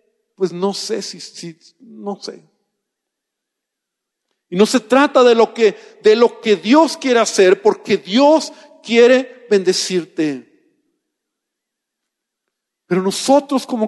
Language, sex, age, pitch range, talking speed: Spanish, male, 50-69, 210-255 Hz, 110 wpm